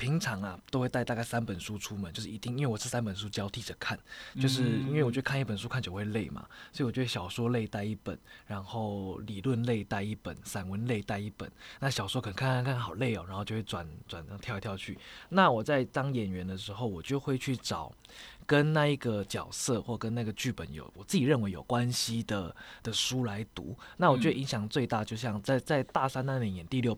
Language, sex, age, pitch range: Chinese, male, 20-39, 105-130 Hz